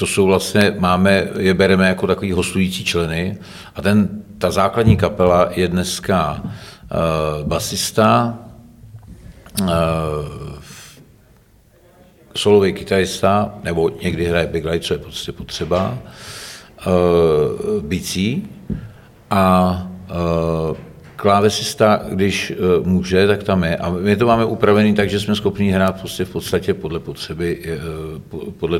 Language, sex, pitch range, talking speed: Czech, male, 85-105 Hz, 115 wpm